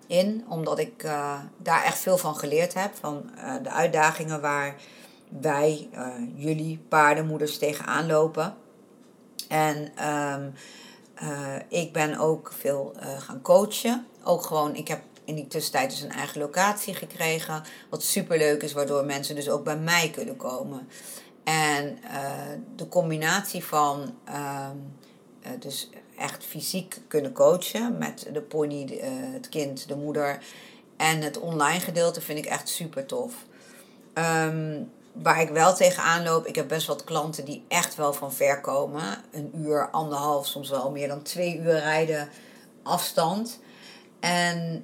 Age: 50-69